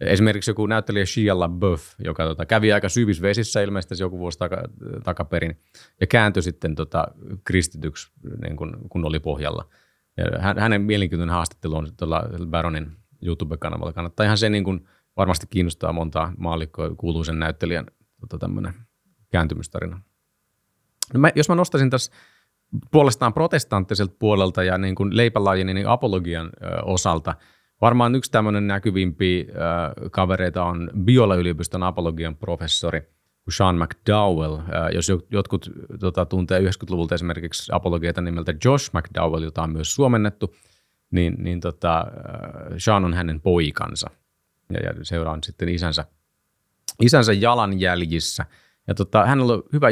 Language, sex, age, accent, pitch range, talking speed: Finnish, male, 30-49, native, 85-105 Hz, 130 wpm